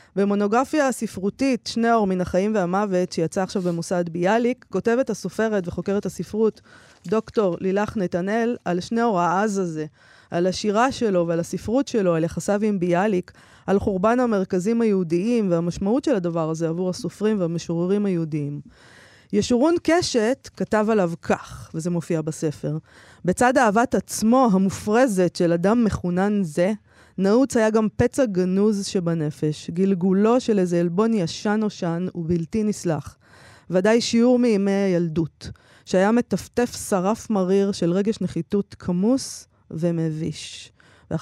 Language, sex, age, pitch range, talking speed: Hebrew, female, 20-39, 175-220 Hz, 130 wpm